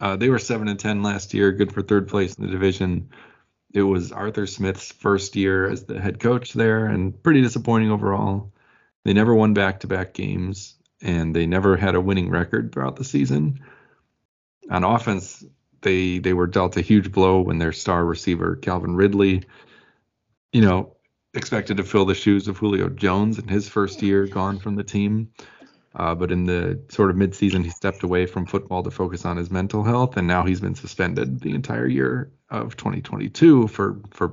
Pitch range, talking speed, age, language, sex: 90-105 Hz, 190 wpm, 30-49, English, male